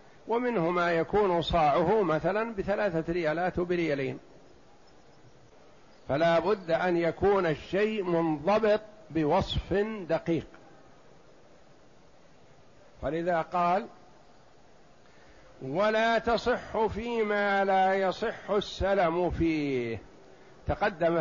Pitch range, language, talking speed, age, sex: 170-205 Hz, Arabic, 75 wpm, 60-79, male